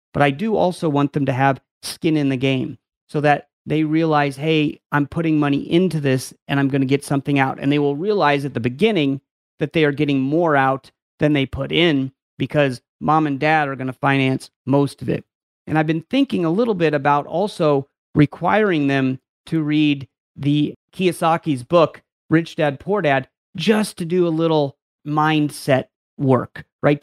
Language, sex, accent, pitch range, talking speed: English, male, American, 135-155 Hz, 190 wpm